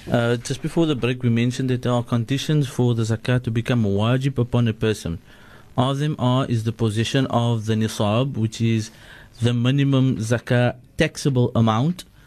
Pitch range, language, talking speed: 115-140 Hz, English, 175 wpm